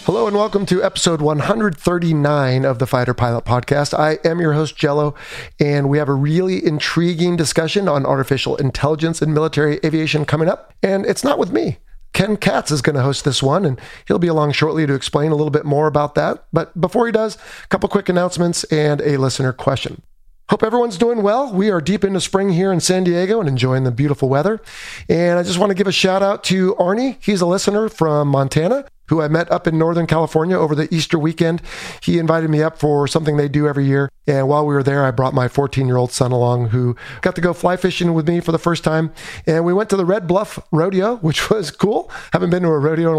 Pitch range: 145-185 Hz